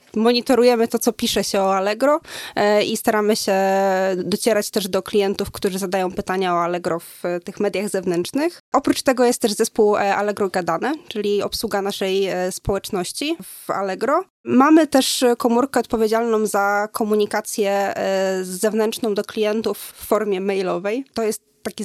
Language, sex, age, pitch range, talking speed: Polish, female, 20-39, 195-225 Hz, 140 wpm